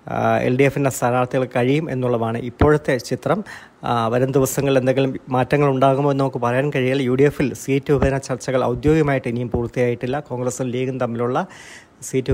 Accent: native